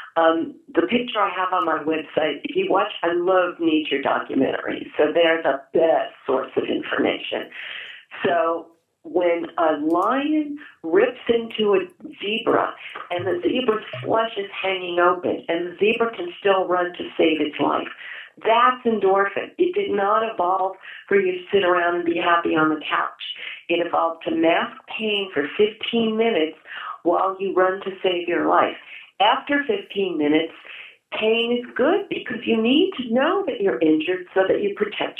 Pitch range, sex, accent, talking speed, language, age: 170-245 Hz, female, American, 165 wpm, English, 50-69